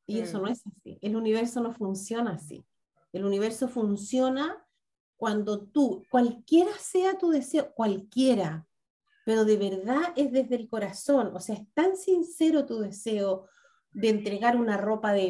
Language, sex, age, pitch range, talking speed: Spanish, female, 40-59, 200-260 Hz, 155 wpm